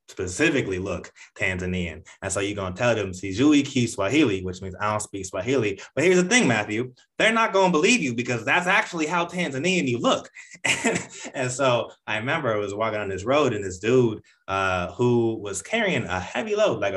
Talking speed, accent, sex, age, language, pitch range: 200 wpm, American, male, 20-39, English, 95-125 Hz